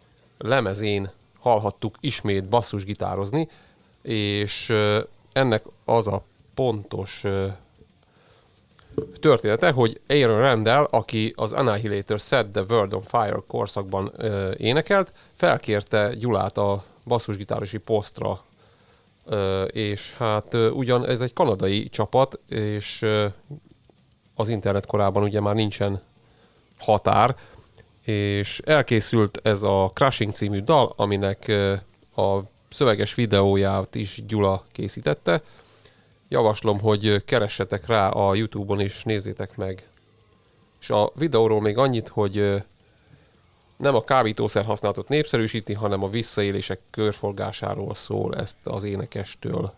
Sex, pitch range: male, 100-115 Hz